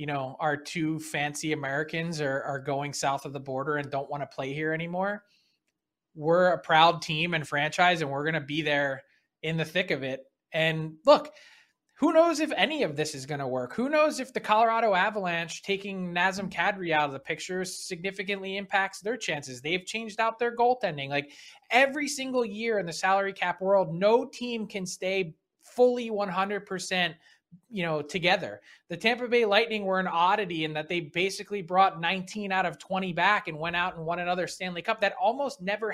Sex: male